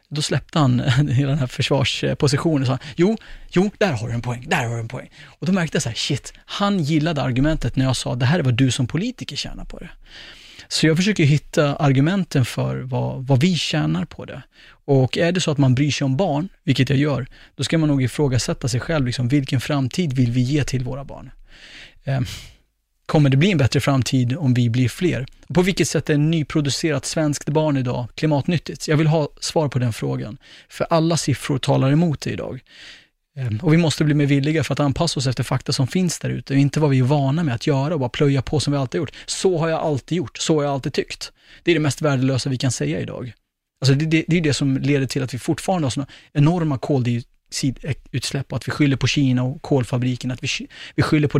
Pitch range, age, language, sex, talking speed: 130-155 Hz, 30-49, Swedish, male, 230 wpm